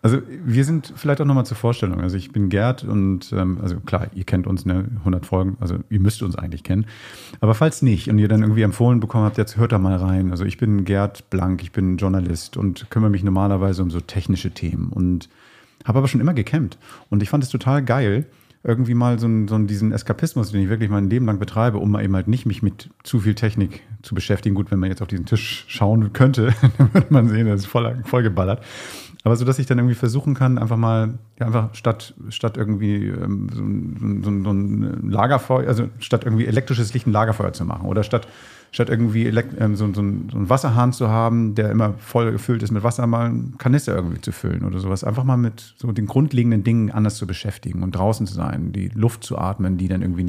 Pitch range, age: 100-120 Hz, 40-59